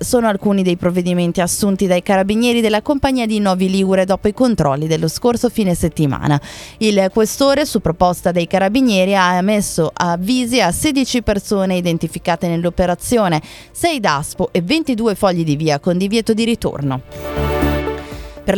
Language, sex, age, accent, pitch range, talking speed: Italian, female, 20-39, native, 175-220 Hz, 145 wpm